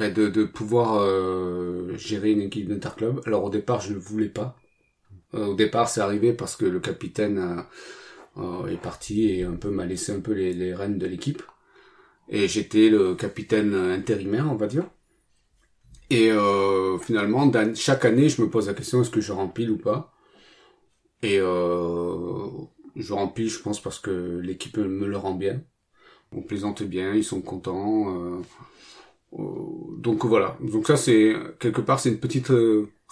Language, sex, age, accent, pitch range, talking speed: French, male, 30-49, French, 95-110 Hz, 170 wpm